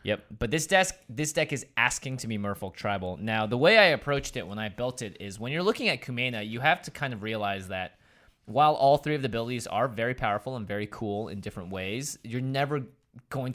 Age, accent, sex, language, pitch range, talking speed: 20-39, American, male, English, 100-125 Hz, 235 wpm